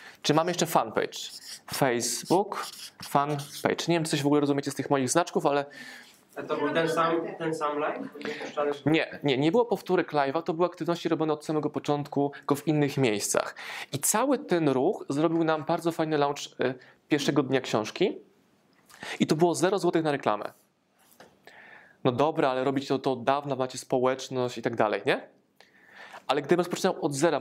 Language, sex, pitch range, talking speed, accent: Polish, male, 140-170 Hz, 175 wpm, native